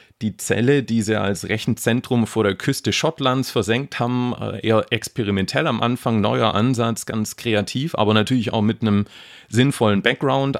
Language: English